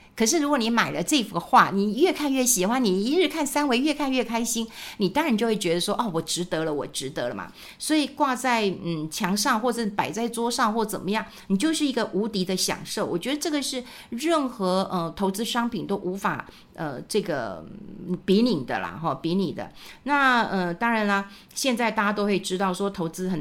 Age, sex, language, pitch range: 50-69, female, Chinese, 180-230 Hz